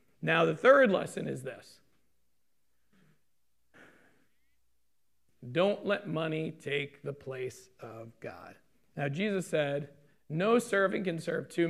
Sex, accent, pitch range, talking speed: male, American, 145-185 Hz, 115 wpm